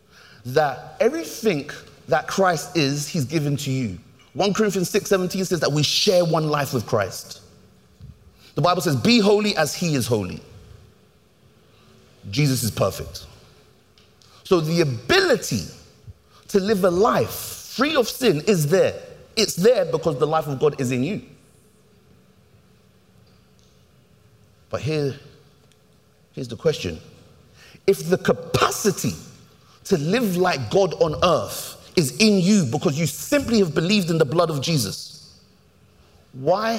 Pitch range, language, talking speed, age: 130-195 Hz, English, 135 wpm, 30-49